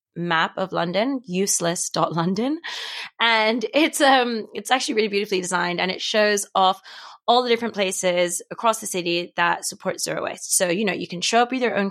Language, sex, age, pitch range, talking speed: English, female, 20-39, 180-225 Hz, 190 wpm